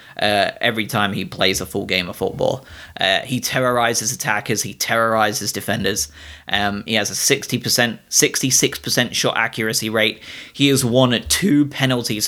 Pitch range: 105-125 Hz